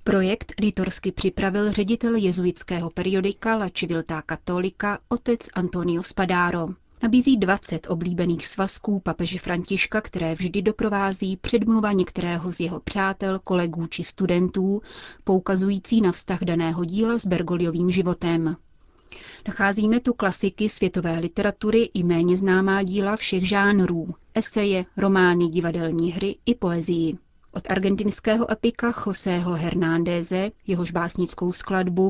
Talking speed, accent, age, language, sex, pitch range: 115 wpm, native, 30-49, Czech, female, 175-200 Hz